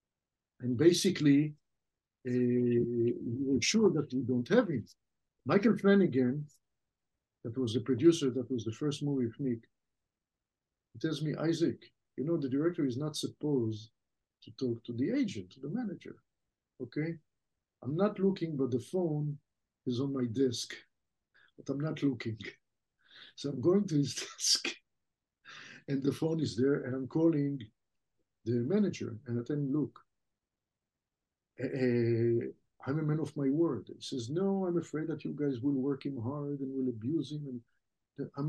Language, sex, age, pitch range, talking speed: English, male, 50-69, 125-155 Hz, 160 wpm